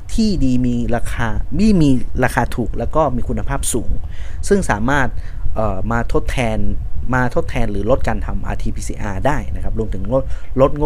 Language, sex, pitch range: Thai, male, 100-135 Hz